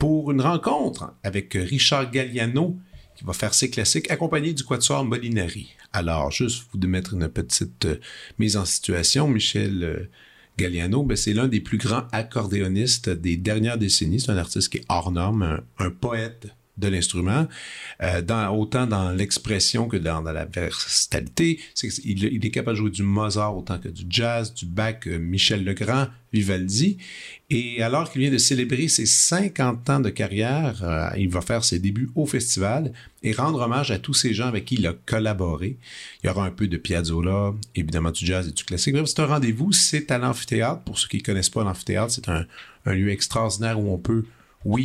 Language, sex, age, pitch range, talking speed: French, male, 50-69, 95-125 Hz, 195 wpm